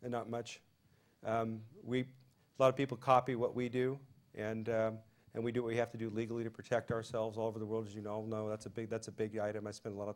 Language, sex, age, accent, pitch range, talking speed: English, male, 40-59, American, 110-135 Hz, 280 wpm